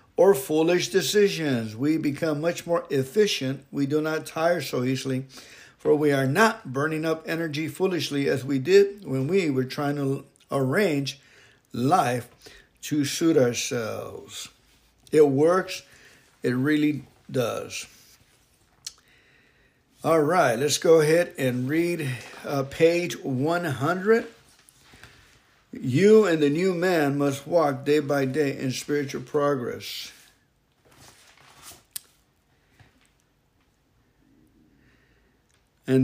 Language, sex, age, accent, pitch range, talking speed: English, male, 60-79, American, 135-165 Hz, 110 wpm